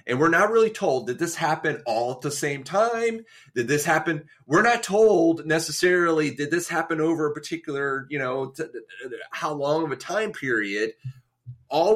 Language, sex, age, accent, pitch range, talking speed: English, male, 30-49, American, 125-160 Hz, 175 wpm